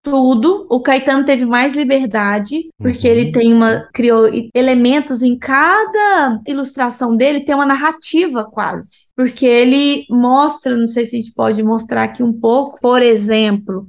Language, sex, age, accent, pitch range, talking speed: Portuguese, female, 20-39, Brazilian, 230-275 Hz, 150 wpm